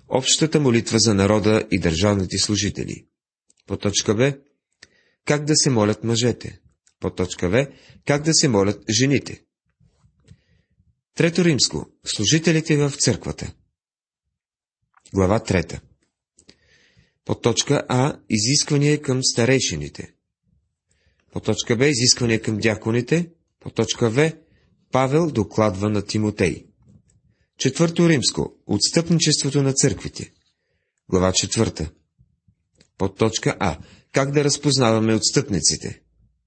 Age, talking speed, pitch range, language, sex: 40-59, 100 wpm, 95-140 Hz, Bulgarian, male